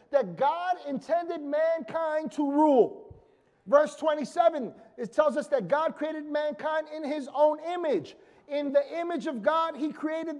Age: 40-59